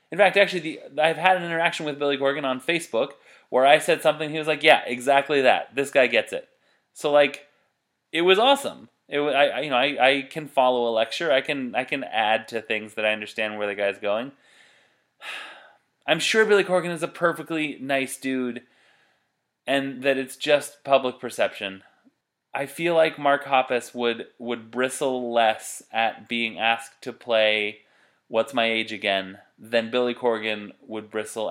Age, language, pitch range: 20-39, English, 110-140 Hz